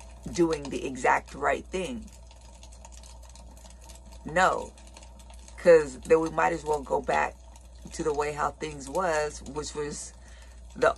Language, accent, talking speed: English, American, 125 wpm